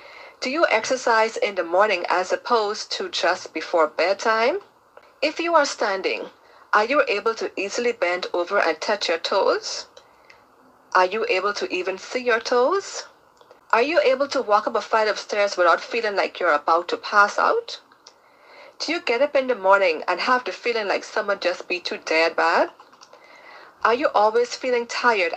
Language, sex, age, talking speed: English, female, 40-59, 180 wpm